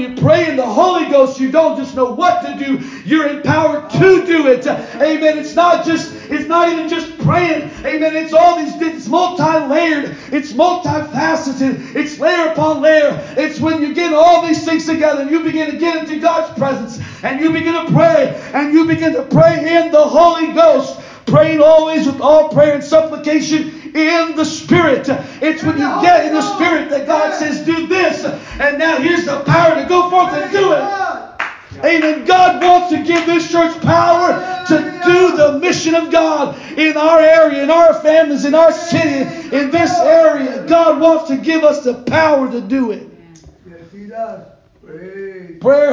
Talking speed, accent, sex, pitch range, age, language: 185 wpm, American, male, 275-325 Hz, 50-69, English